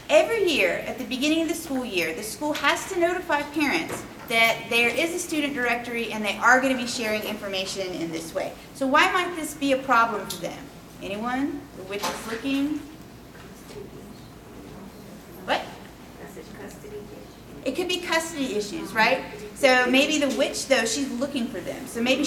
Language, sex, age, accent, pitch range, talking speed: English, female, 30-49, American, 215-290 Hz, 170 wpm